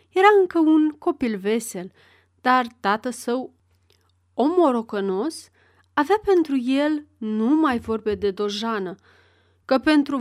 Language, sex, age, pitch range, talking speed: Romanian, female, 30-49, 195-275 Hz, 105 wpm